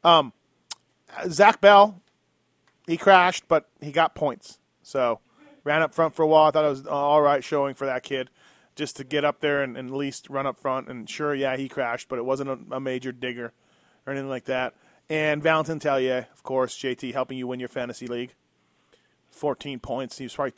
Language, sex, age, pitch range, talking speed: English, male, 30-49, 130-160 Hz, 205 wpm